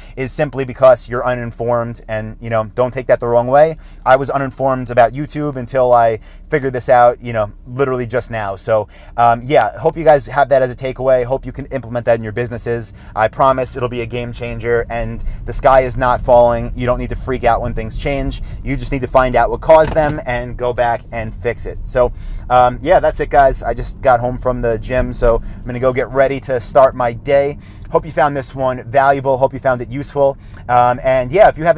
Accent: American